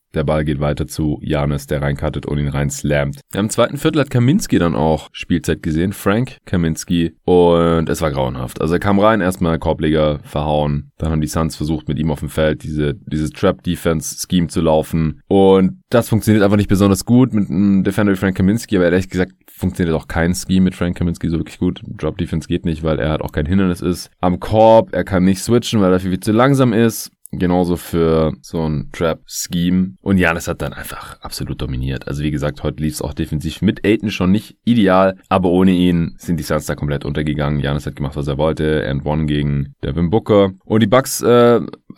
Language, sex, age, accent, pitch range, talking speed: German, male, 30-49, German, 80-105 Hz, 210 wpm